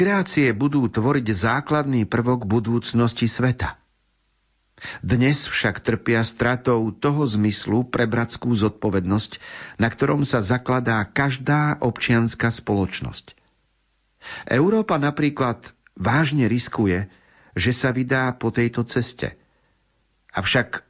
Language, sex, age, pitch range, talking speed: Slovak, male, 50-69, 100-125 Hz, 95 wpm